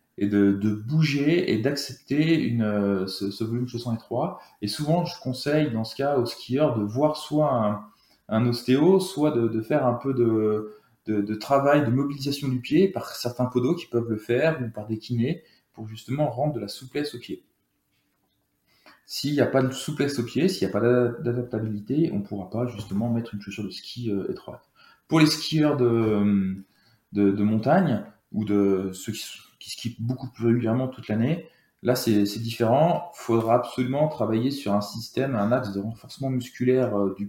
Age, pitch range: 20-39, 105-135 Hz